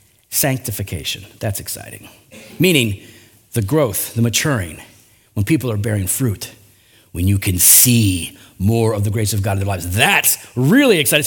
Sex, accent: male, American